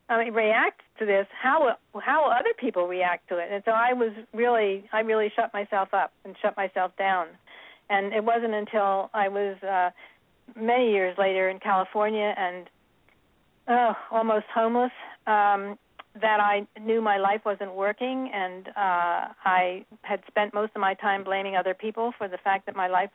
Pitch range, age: 190-220 Hz, 50-69